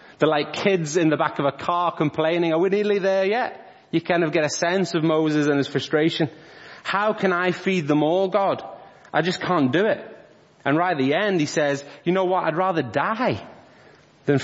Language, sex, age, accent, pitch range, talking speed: English, male, 30-49, British, 120-160 Hz, 215 wpm